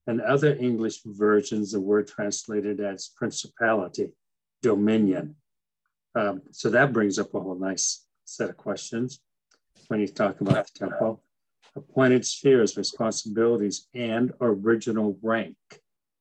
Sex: male